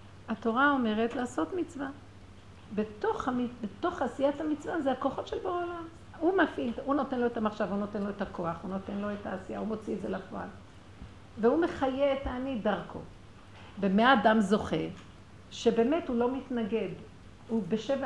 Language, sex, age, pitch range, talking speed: Hebrew, female, 60-79, 180-250 Hz, 160 wpm